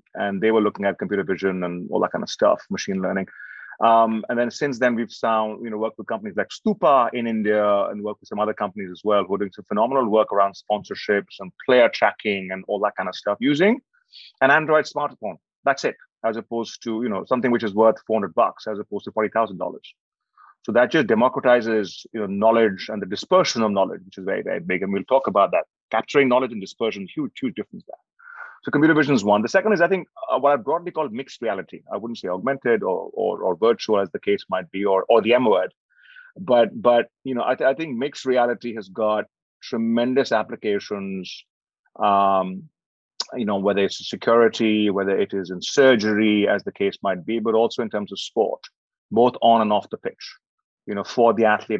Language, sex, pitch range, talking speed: English, male, 105-135 Hz, 220 wpm